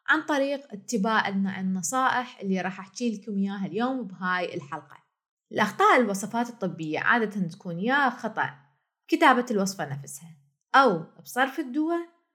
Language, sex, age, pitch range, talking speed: Arabic, female, 20-39, 180-245 Hz, 120 wpm